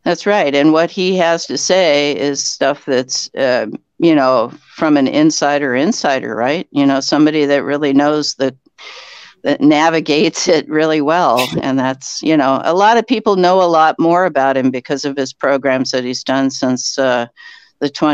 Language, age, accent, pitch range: English, 60-79, American, 135-165 Hz